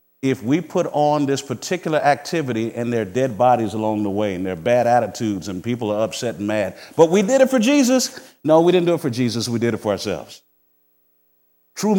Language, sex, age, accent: English, male, 50-69, American